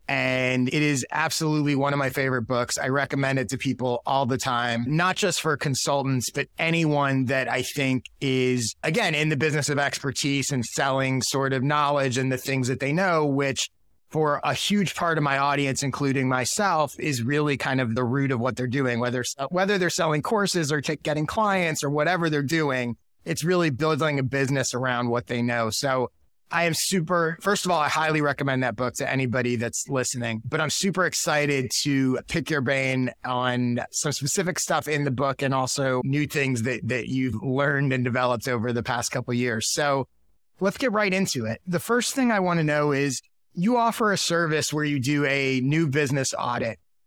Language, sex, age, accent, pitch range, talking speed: English, male, 30-49, American, 130-155 Hz, 200 wpm